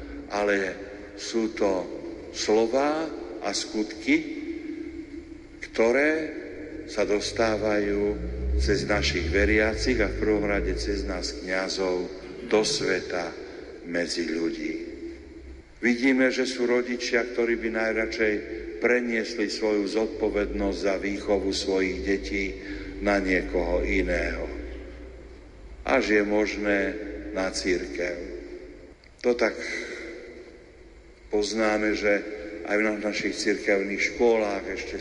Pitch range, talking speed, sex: 100-120 Hz, 95 wpm, male